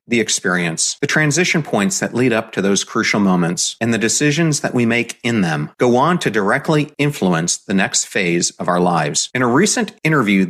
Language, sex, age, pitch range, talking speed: English, male, 40-59, 100-160 Hz, 200 wpm